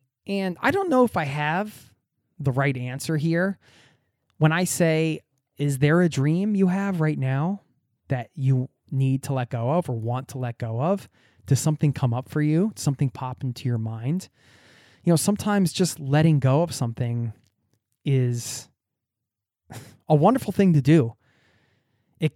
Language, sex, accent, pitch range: English, male, American, 125-165 Hz